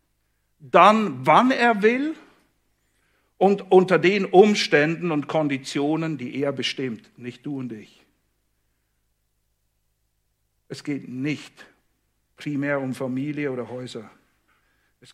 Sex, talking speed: male, 105 wpm